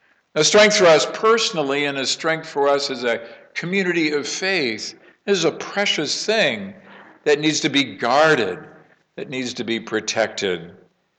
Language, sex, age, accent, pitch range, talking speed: English, male, 50-69, American, 105-150 Hz, 155 wpm